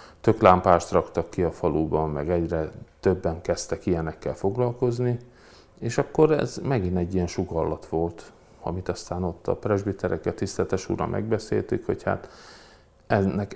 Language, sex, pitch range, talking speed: Hungarian, male, 80-100 Hz, 135 wpm